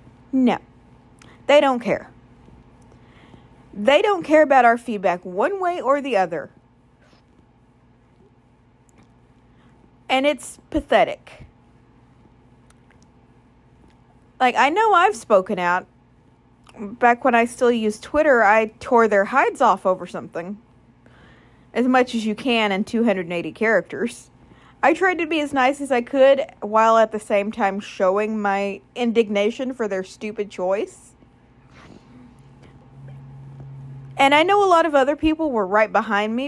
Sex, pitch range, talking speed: female, 185-260 Hz, 130 wpm